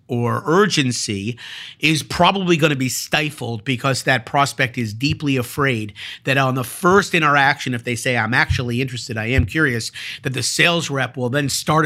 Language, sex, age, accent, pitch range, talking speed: English, male, 50-69, American, 125-165 Hz, 175 wpm